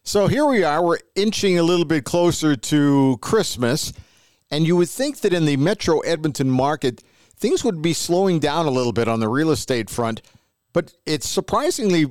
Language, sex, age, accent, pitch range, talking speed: English, male, 50-69, American, 125-160 Hz, 190 wpm